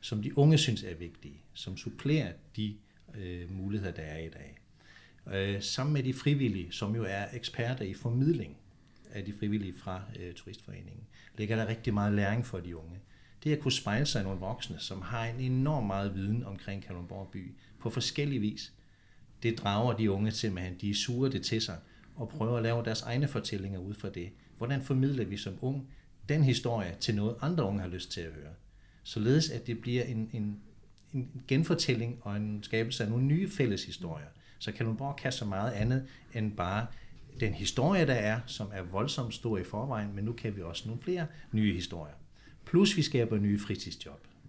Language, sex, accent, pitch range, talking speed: Danish, male, native, 95-120 Hz, 195 wpm